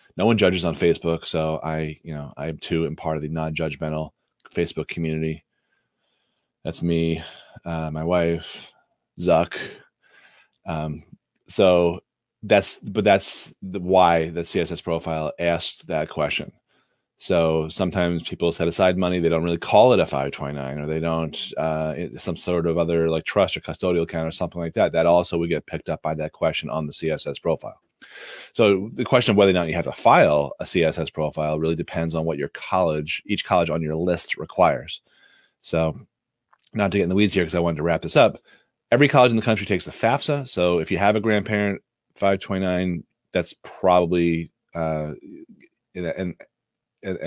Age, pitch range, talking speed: 30-49, 80-90 Hz, 175 wpm